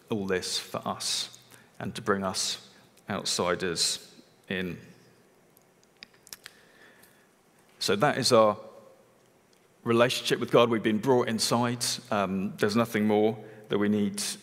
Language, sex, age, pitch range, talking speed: English, male, 40-59, 110-135 Hz, 115 wpm